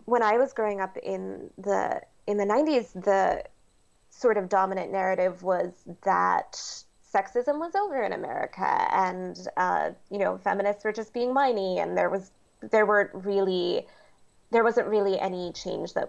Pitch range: 180-205 Hz